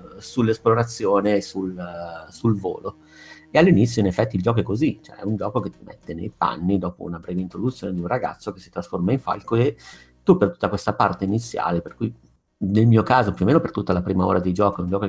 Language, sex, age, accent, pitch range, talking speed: Italian, male, 50-69, native, 95-105 Hz, 240 wpm